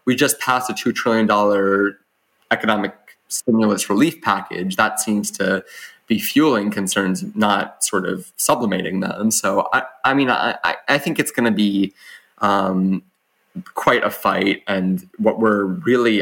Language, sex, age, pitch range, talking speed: English, male, 20-39, 95-125 Hz, 145 wpm